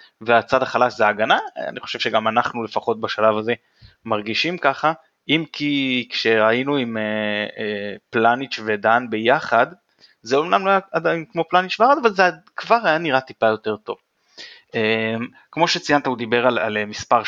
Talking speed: 145 wpm